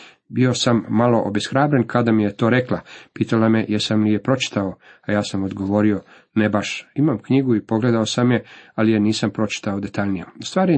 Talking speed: 190 wpm